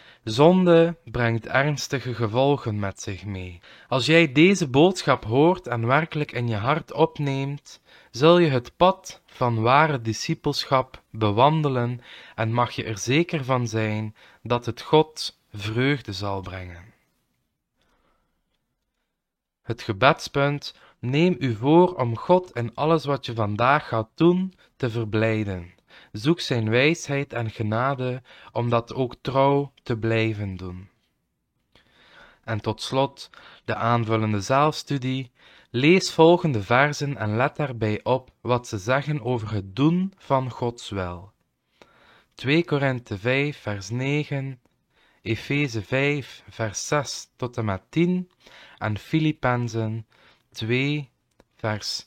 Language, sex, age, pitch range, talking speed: Dutch, male, 20-39, 110-145 Hz, 120 wpm